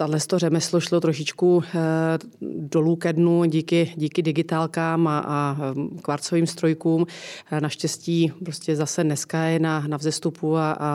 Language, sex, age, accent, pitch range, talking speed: Czech, female, 30-49, native, 145-160 Hz, 125 wpm